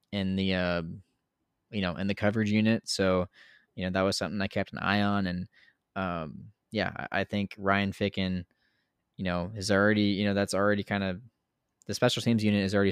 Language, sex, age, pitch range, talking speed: English, male, 20-39, 90-105 Hz, 200 wpm